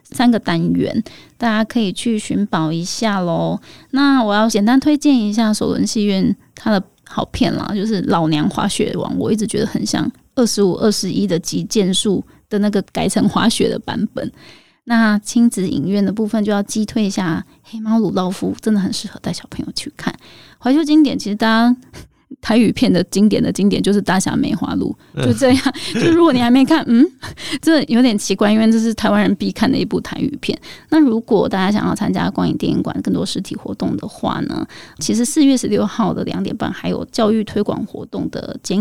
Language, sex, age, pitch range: Chinese, female, 20-39, 200-245 Hz